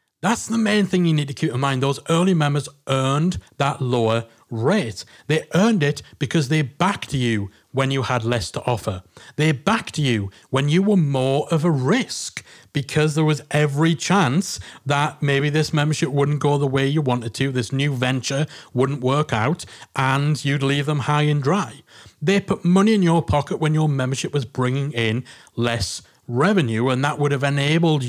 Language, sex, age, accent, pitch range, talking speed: English, male, 40-59, British, 125-160 Hz, 190 wpm